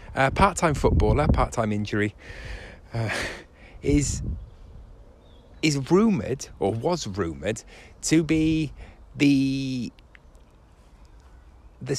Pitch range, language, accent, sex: 85-120 Hz, English, British, male